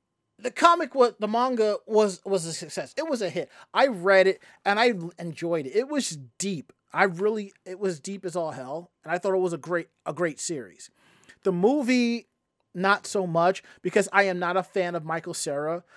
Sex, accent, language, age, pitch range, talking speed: male, American, English, 30-49, 170-215 Hz, 205 wpm